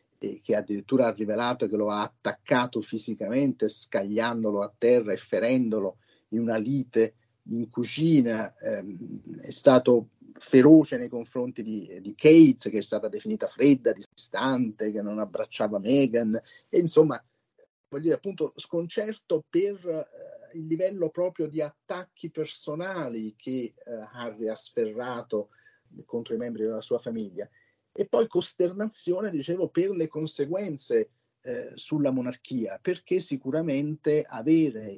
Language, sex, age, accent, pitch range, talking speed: Italian, male, 40-59, native, 115-175 Hz, 125 wpm